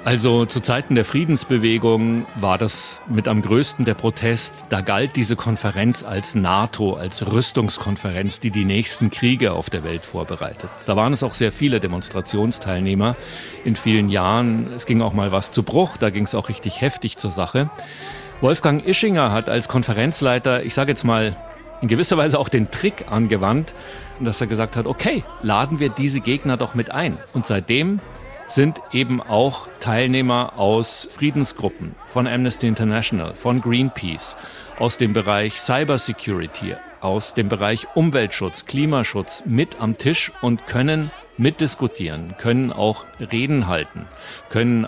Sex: male